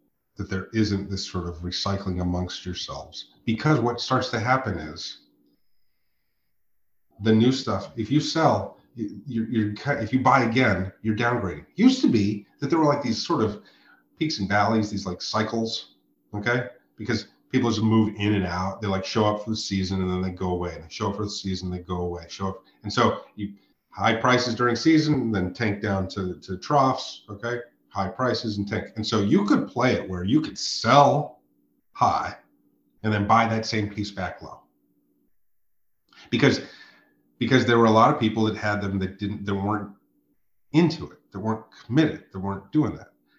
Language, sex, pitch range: English, male, 95-120 Hz